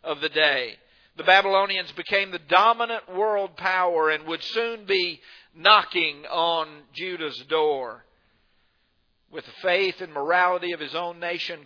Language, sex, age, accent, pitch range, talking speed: English, male, 50-69, American, 130-185 Hz, 140 wpm